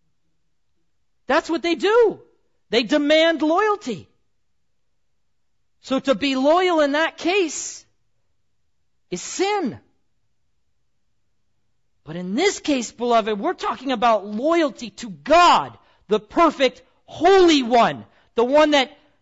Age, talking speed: 40-59, 105 wpm